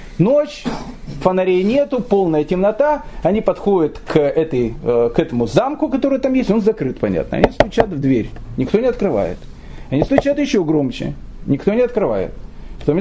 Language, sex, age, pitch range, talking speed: Russian, male, 40-59, 145-220 Hz, 150 wpm